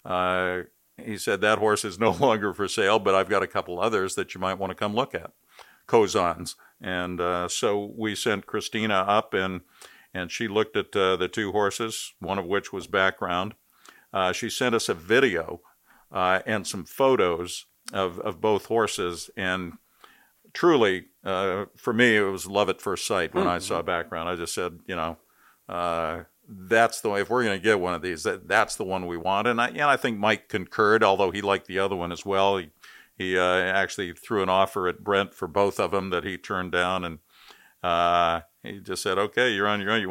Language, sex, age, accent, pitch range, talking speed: English, male, 50-69, American, 90-105 Hz, 210 wpm